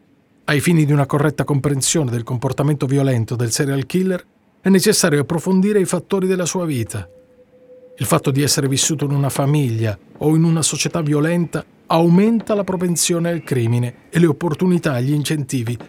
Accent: native